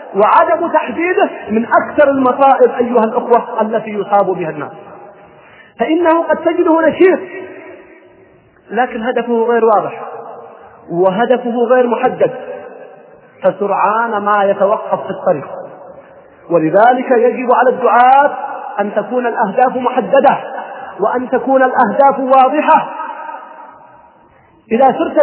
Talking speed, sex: 100 wpm, male